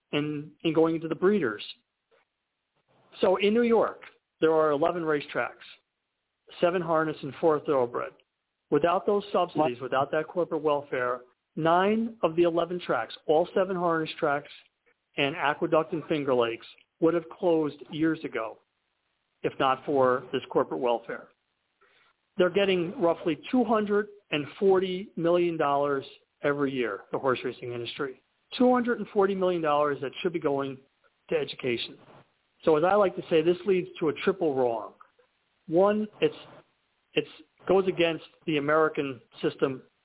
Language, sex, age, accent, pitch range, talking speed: English, male, 50-69, American, 140-180 Hz, 135 wpm